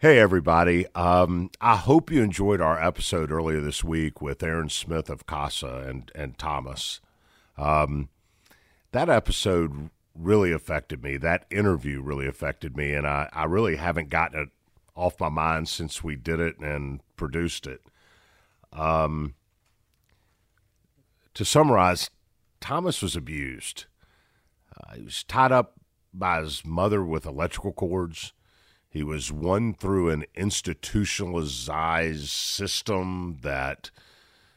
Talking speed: 125 wpm